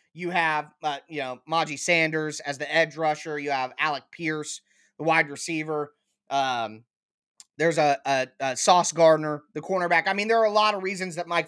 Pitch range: 170-250 Hz